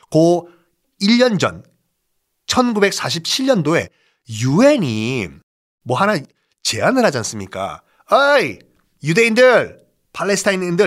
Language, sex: Korean, male